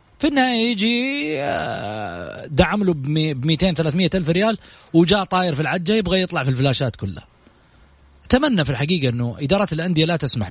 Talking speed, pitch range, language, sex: 150 wpm, 110-160 Hz, Arabic, male